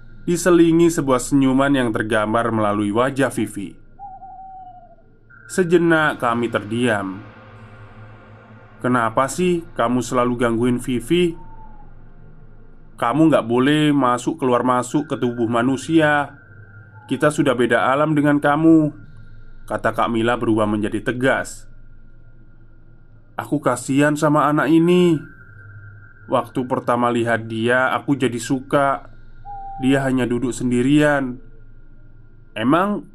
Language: Indonesian